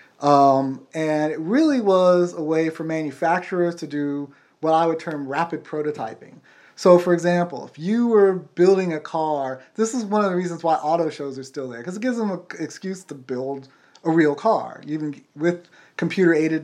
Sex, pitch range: male, 145-190 Hz